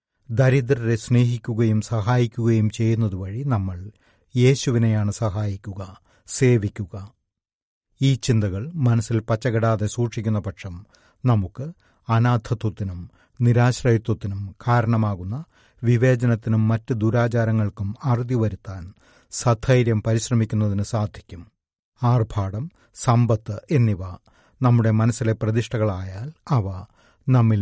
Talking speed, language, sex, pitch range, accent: 75 wpm, Malayalam, male, 105-120 Hz, native